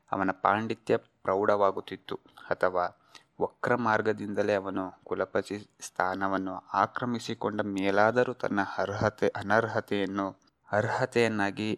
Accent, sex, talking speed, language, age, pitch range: native, male, 75 wpm, Kannada, 20-39, 95-110 Hz